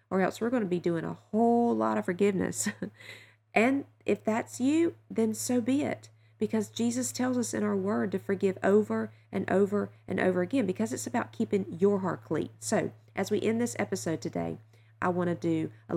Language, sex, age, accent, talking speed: English, female, 40-59, American, 205 wpm